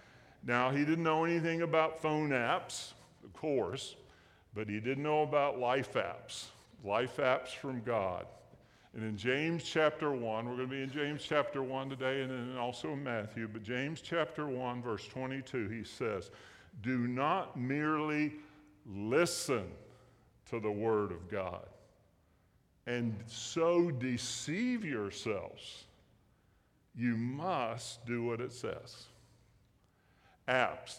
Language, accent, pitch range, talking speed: English, American, 115-160 Hz, 130 wpm